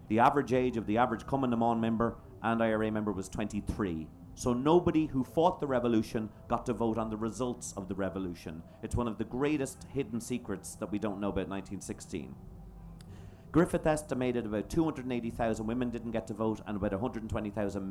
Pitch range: 100-125 Hz